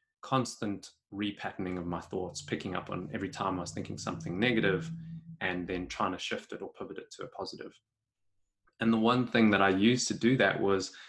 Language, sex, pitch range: English, male, 90-110 Hz